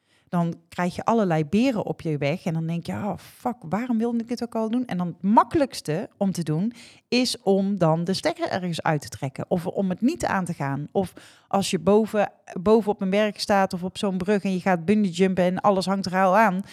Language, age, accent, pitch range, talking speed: Dutch, 30-49, Dutch, 155-210 Hz, 245 wpm